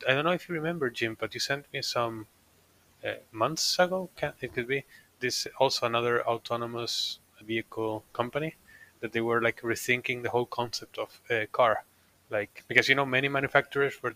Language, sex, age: English, male, 20-39